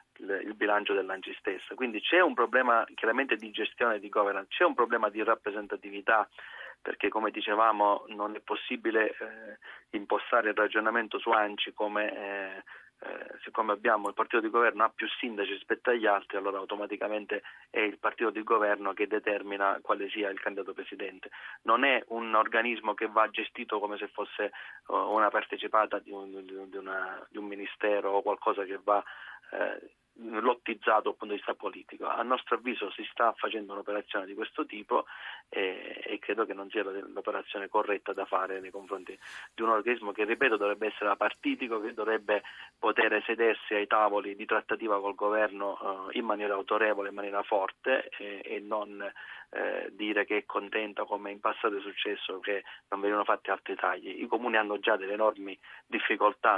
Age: 30-49